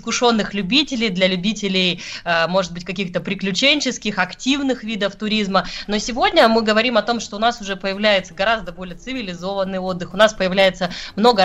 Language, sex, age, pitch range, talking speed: Russian, female, 20-39, 185-230 Hz, 155 wpm